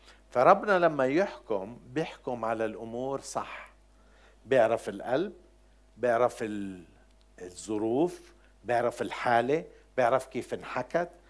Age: 60-79